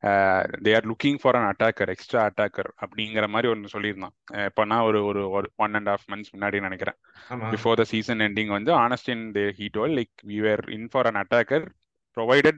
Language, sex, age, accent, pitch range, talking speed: Tamil, male, 20-39, native, 100-115 Hz, 190 wpm